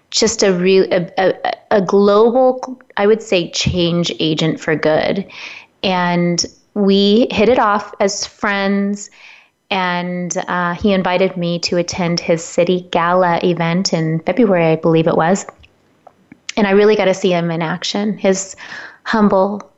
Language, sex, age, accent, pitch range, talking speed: English, female, 30-49, American, 165-195 Hz, 145 wpm